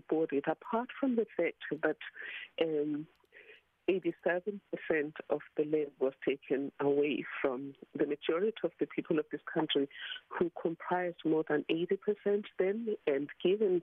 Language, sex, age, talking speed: English, female, 50-69, 130 wpm